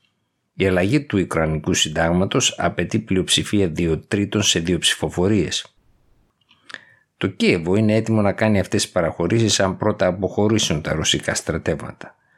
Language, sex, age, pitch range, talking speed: Greek, male, 60-79, 85-105 Hz, 130 wpm